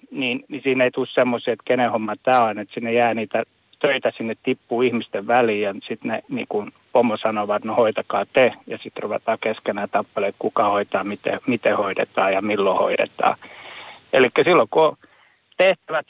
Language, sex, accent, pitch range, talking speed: Finnish, male, native, 115-140 Hz, 180 wpm